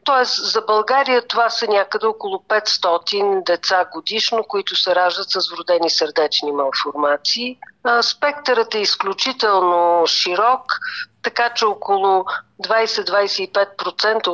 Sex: female